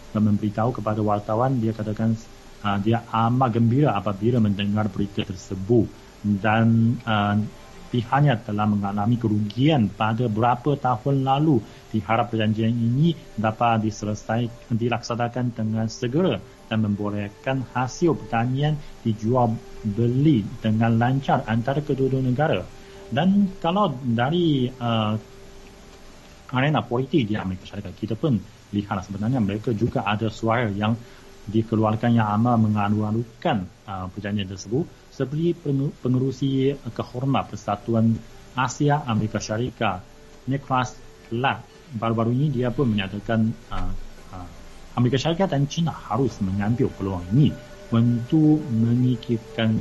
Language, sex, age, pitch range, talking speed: Malay, male, 40-59, 105-130 Hz, 110 wpm